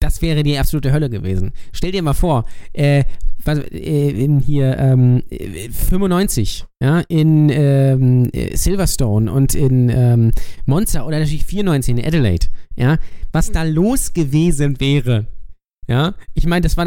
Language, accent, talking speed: German, German, 140 wpm